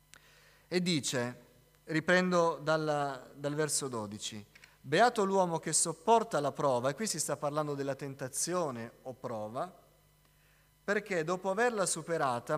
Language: Italian